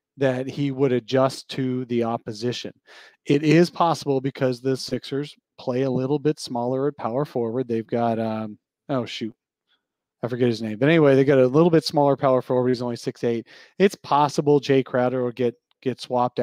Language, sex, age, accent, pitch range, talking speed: English, male, 30-49, American, 120-150 Hz, 185 wpm